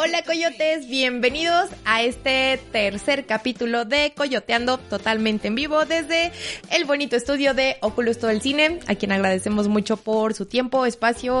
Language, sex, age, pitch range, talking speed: Spanish, female, 20-39, 210-285 Hz, 155 wpm